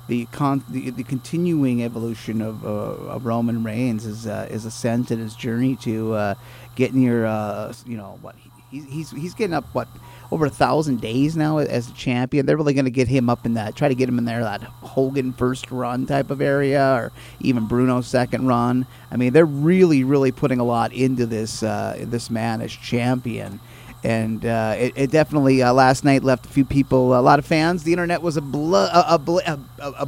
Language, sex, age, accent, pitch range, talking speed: English, male, 30-49, American, 115-140 Hz, 215 wpm